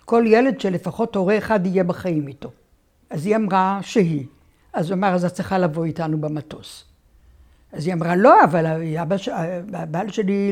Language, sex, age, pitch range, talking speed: Hebrew, female, 60-79, 175-240 Hz, 150 wpm